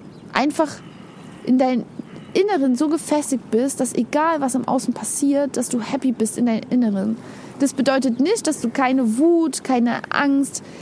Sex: female